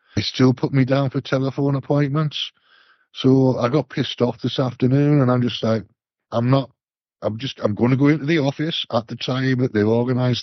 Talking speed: 205 wpm